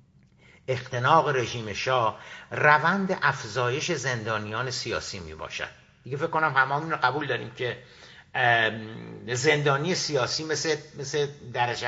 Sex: male